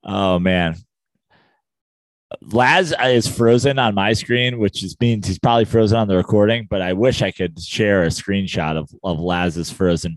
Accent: American